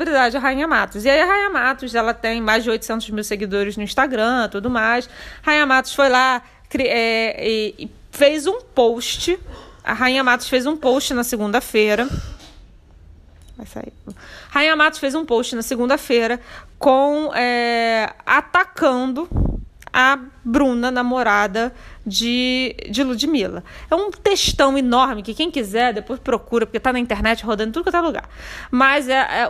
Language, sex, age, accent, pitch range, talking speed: Portuguese, female, 20-39, Brazilian, 230-290 Hz, 155 wpm